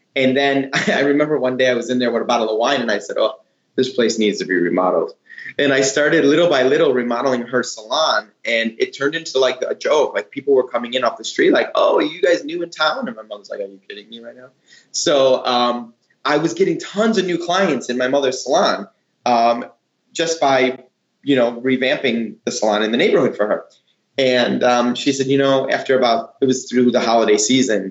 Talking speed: 230 wpm